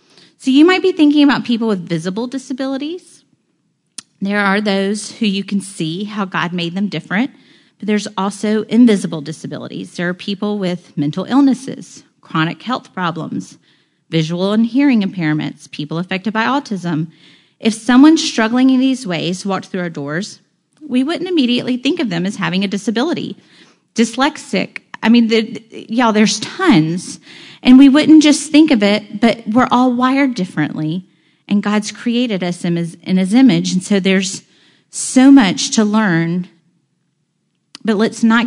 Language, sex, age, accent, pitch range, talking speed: English, female, 30-49, American, 170-240 Hz, 155 wpm